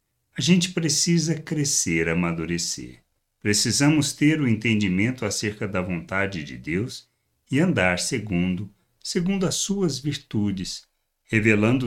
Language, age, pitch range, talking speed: Portuguese, 60-79, 95-140 Hz, 110 wpm